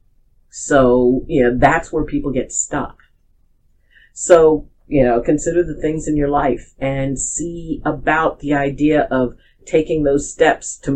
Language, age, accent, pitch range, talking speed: English, 50-69, American, 120-145 Hz, 150 wpm